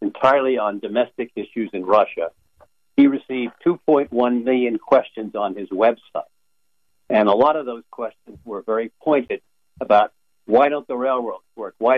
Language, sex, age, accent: English, male, 60-79, American